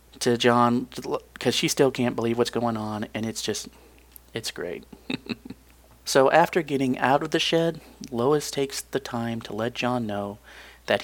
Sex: male